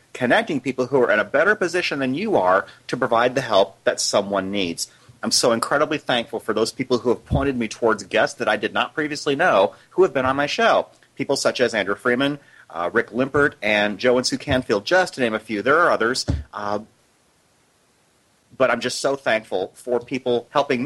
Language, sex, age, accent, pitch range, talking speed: English, male, 30-49, American, 105-140 Hz, 210 wpm